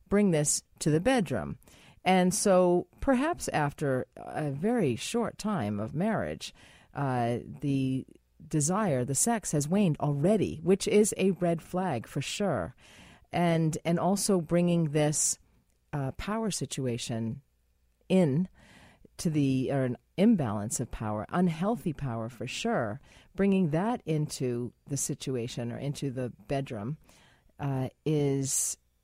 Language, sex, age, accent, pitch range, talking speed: English, female, 40-59, American, 130-180 Hz, 125 wpm